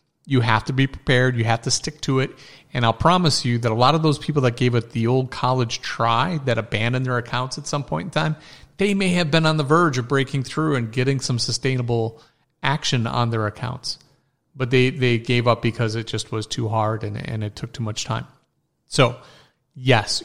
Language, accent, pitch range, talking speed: English, American, 115-140 Hz, 220 wpm